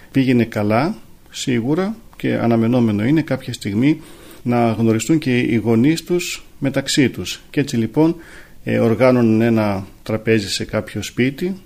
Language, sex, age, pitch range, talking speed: Greek, male, 40-59, 115-150 Hz, 135 wpm